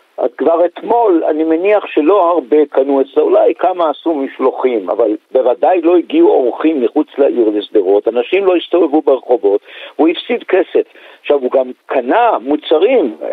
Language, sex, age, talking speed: Hebrew, male, 50-69, 155 wpm